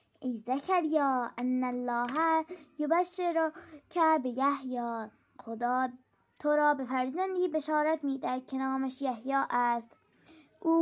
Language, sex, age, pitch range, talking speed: Persian, female, 10-29, 255-305 Hz, 110 wpm